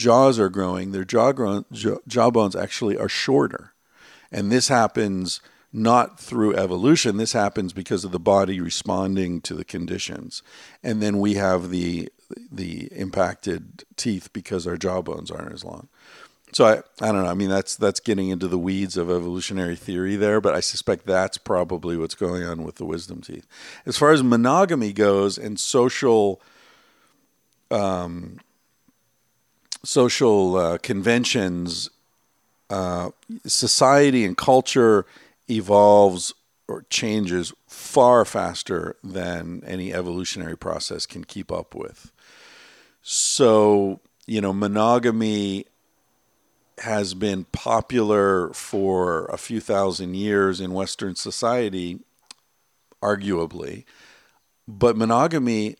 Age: 50-69